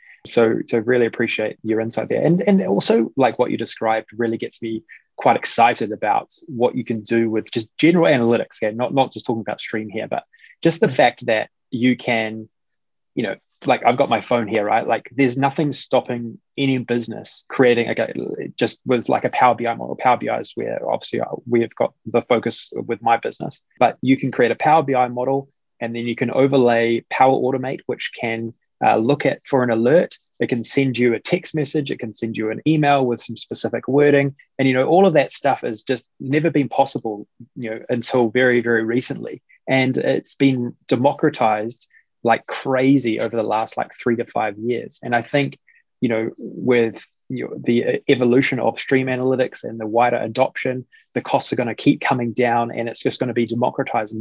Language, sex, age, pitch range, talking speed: English, male, 20-39, 115-135 Hz, 205 wpm